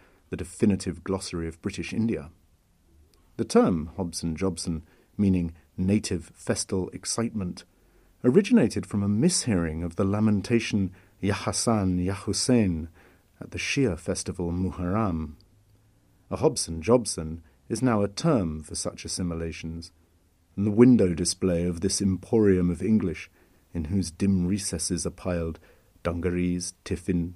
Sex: male